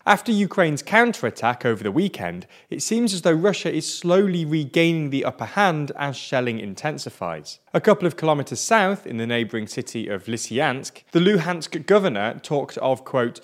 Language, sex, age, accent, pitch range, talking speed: English, male, 20-39, British, 115-185 Hz, 165 wpm